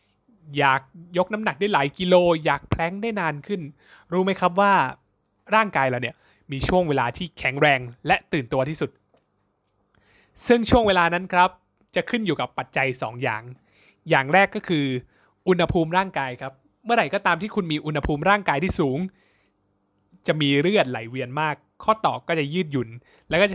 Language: Thai